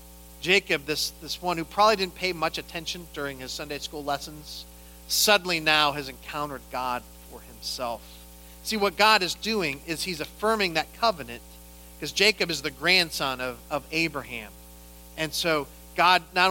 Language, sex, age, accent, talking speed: English, male, 40-59, American, 160 wpm